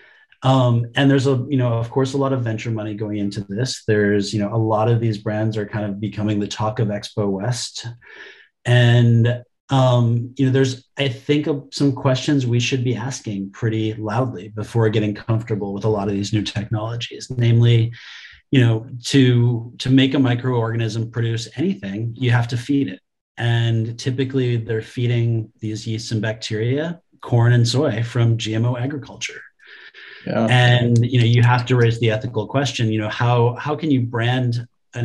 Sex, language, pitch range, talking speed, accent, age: male, English, 110-130 Hz, 180 wpm, American, 30-49